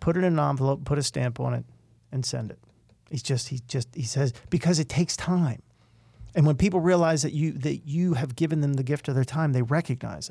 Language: English